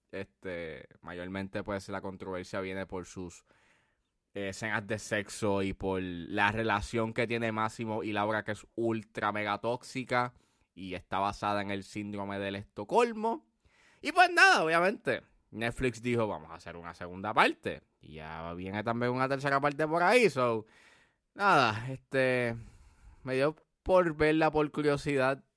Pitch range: 105-150 Hz